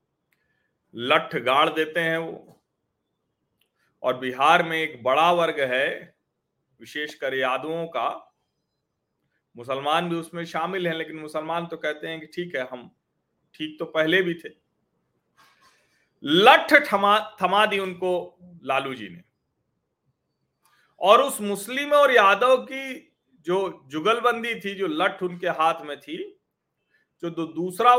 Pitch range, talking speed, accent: 155-210 Hz, 125 wpm, native